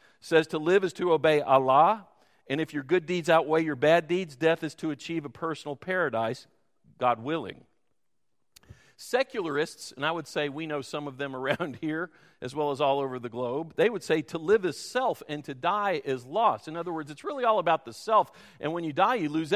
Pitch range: 125-160 Hz